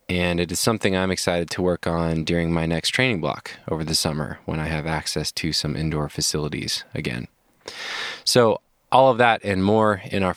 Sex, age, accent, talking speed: male, 20-39, American, 195 wpm